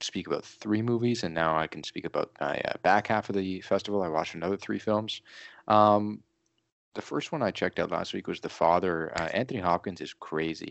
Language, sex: English, male